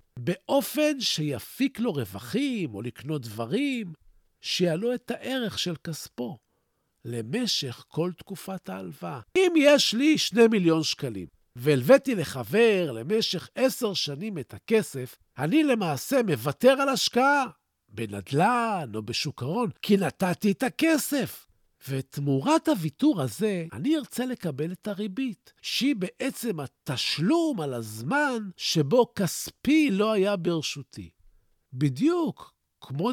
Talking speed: 110 wpm